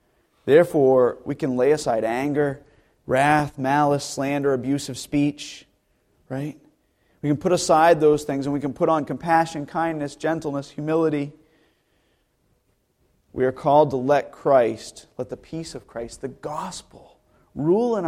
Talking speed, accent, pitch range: 140 wpm, American, 120-145 Hz